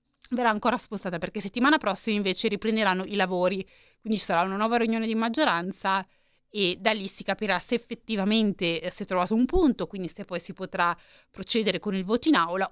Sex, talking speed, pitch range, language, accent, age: female, 195 wpm, 190-235 Hz, Italian, native, 30-49